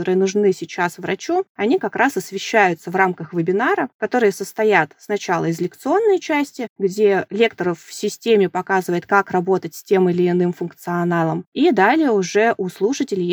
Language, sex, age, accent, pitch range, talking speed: Russian, female, 20-39, native, 180-220 Hz, 155 wpm